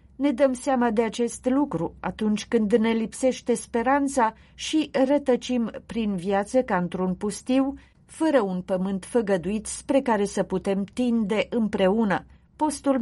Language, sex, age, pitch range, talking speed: Romanian, female, 40-59, 200-265 Hz, 135 wpm